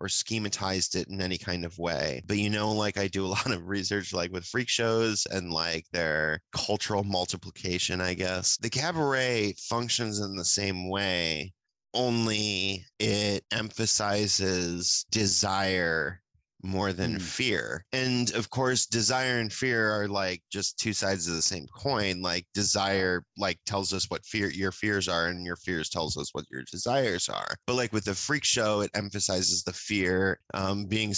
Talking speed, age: 170 wpm, 20-39